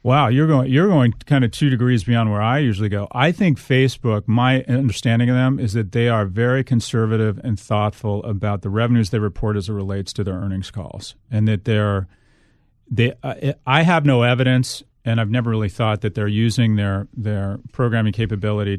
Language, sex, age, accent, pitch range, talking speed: English, male, 40-59, American, 105-130 Hz, 195 wpm